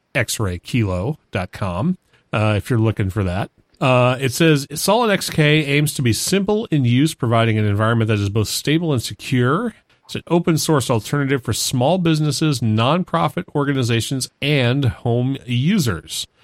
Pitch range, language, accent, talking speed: 105-140 Hz, English, American, 140 wpm